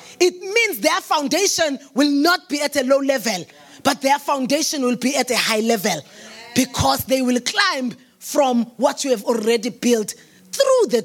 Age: 20-39